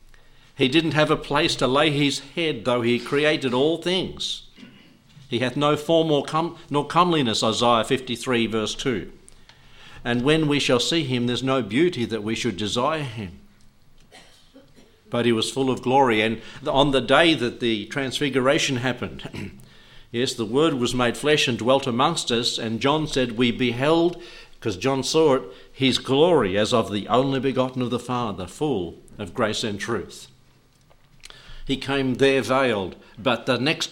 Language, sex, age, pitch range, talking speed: English, male, 50-69, 115-145 Hz, 165 wpm